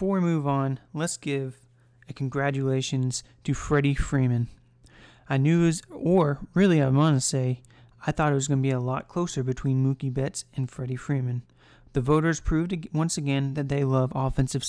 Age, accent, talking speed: 30-49, American, 180 wpm